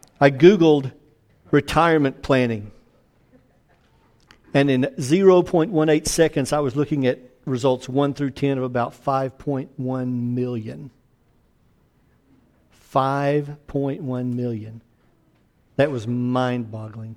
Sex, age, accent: male, 50-69, American